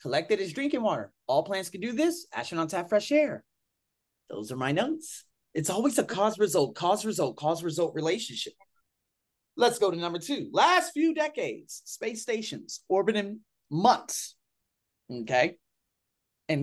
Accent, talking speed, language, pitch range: American, 140 wpm, English, 175-260 Hz